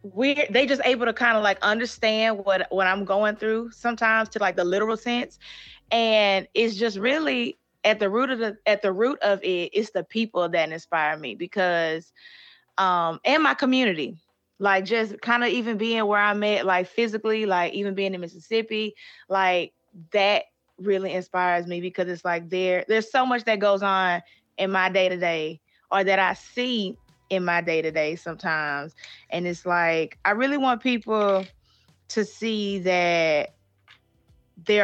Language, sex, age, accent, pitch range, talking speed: English, female, 20-39, American, 180-220 Hz, 170 wpm